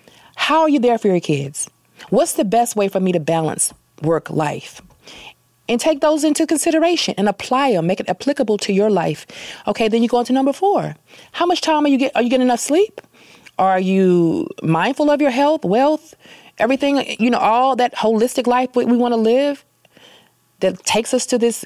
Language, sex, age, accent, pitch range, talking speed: English, female, 30-49, American, 190-270 Hz, 205 wpm